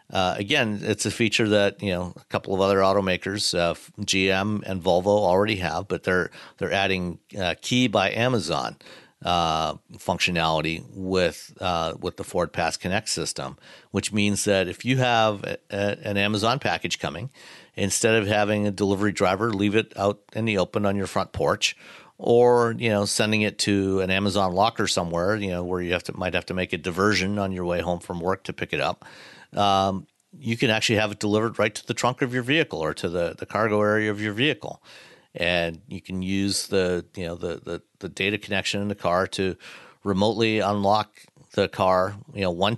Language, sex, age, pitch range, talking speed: English, male, 50-69, 90-105 Hz, 200 wpm